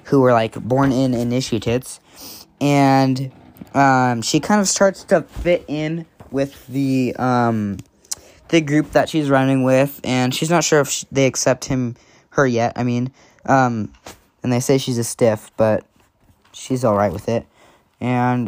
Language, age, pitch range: English, 10-29, 120-145 Hz